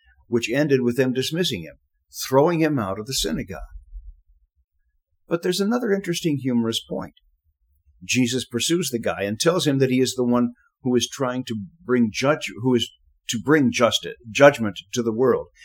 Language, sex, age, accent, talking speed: English, male, 50-69, American, 175 wpm